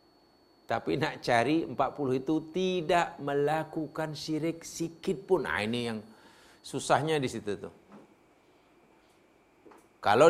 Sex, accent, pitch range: male, Indonesian, 155-245 Hz